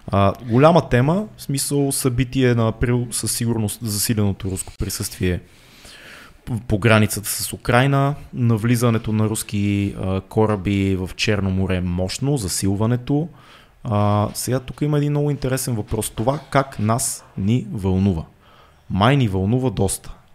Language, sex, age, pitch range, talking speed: Bulgarian, male, 20-39, 100-135 Hz, 125 wpm